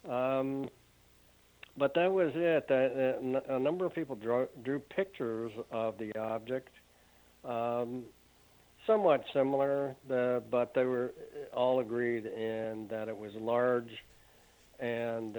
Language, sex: English, male